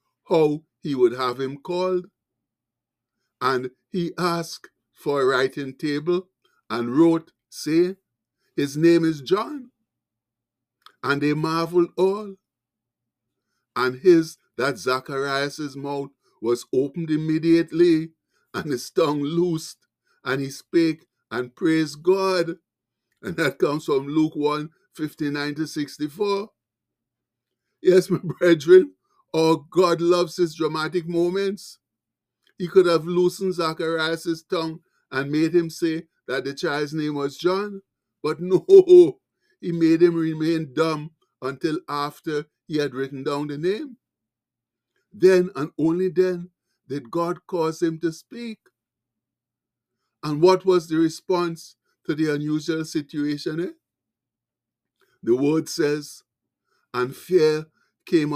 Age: 60-79